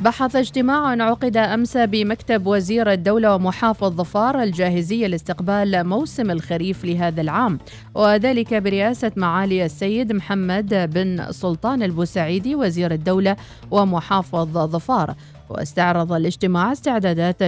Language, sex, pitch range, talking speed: Arabic, female, 175-230 Hz, 105 wpm